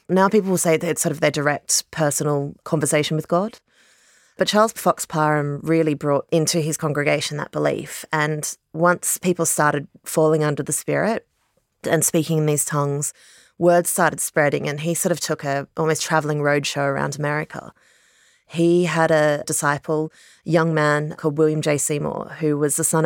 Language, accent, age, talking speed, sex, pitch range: English, Australian, 30-49, 175 wpm, female, 145-165 Hz